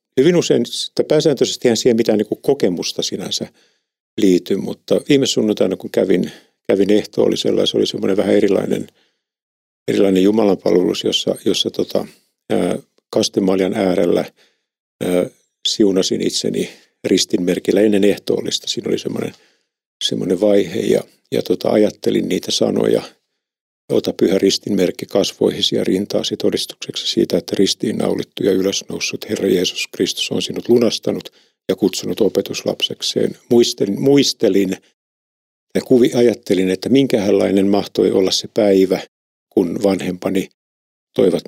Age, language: 50-69, Finnish